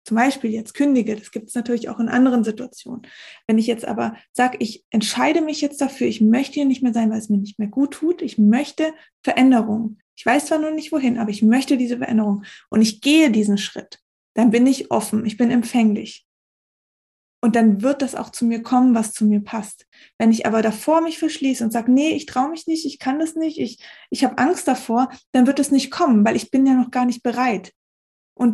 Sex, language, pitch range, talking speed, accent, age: female, German, 225-270 Hz, 230 wpm, German, 20-39